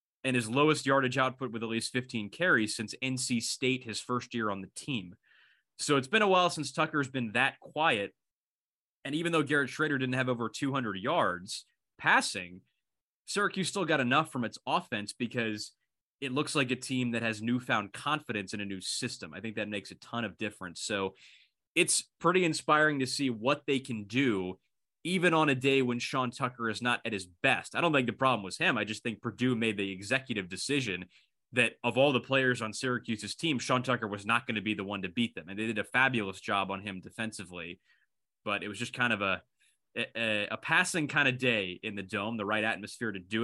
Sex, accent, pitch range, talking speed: male, American, 105-135 Hz, 215 wpm